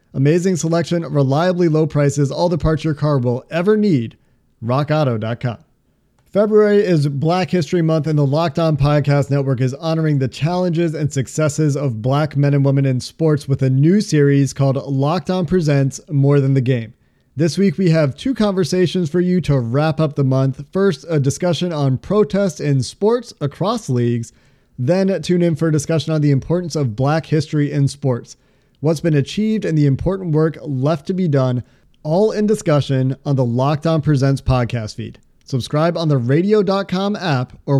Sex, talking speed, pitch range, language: male, 175 wpm, 140-180 Hz, English